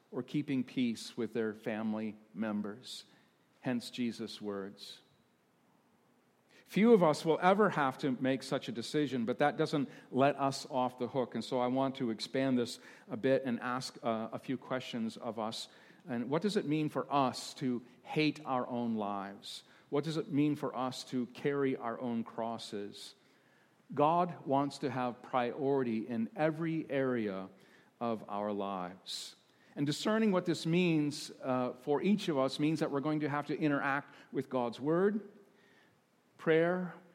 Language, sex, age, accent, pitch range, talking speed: English, male, 50-69, American, 125-155 Hz, 165 wpm